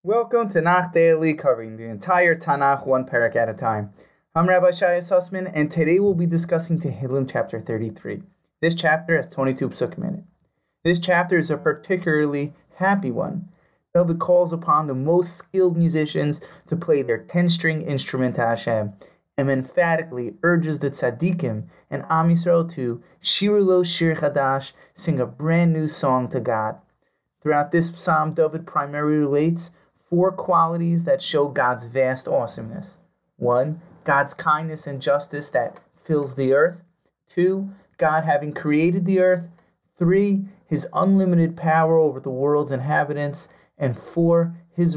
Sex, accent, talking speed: male, American, 150 wpm